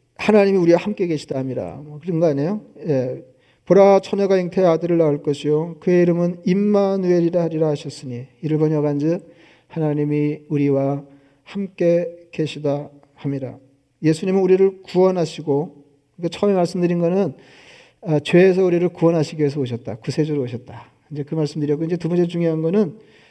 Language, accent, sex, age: Korean, native, male, 40-59